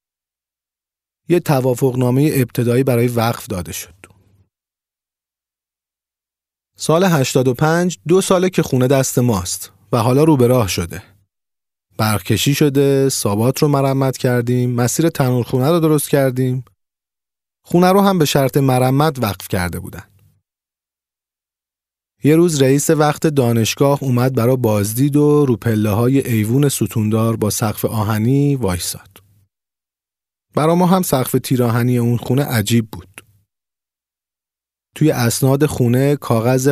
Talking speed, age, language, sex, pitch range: 120 wpm, 40-59, Persian, male, 100-140 Hz